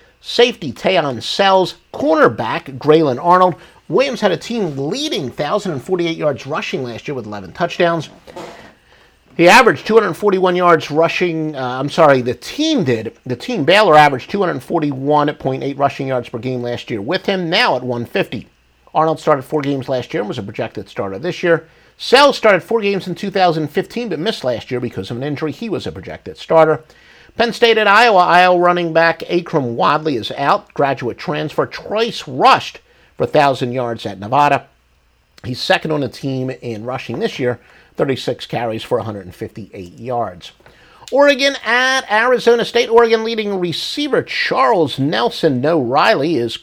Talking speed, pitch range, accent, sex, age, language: 160 wpm, 130-200 Hz, American, male, 50-69, English